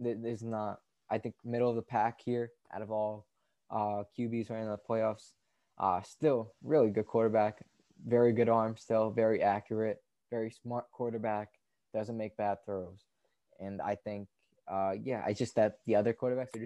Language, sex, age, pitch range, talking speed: English, male, 20-39, 105-120 Hz, 175 wpm